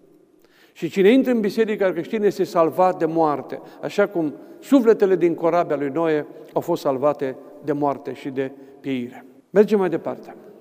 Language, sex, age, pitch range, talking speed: Romanian, male, 50-69, 170-240 Hz, 160 wpm